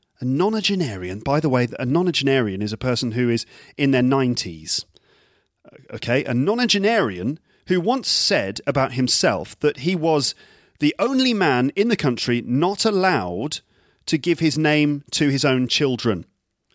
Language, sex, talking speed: English, male, 150 wpm